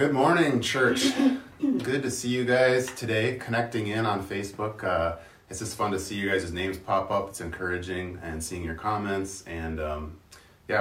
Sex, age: male, 30-49